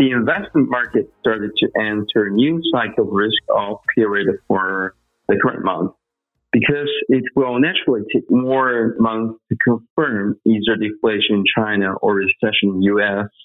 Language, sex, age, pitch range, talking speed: English, male, 50-69, 105-120 Hz, 145 wpm